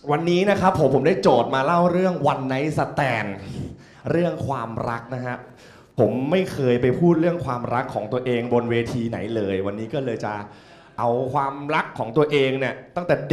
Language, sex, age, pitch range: Thai, male, 20-39, 120-180 Hz